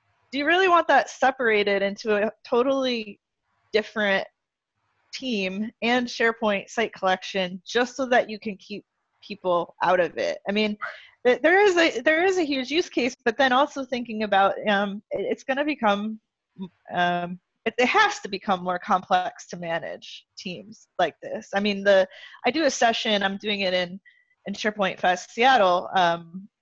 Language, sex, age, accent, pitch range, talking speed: English, female, 20-39, American, 180-225 Hz, 165 wpm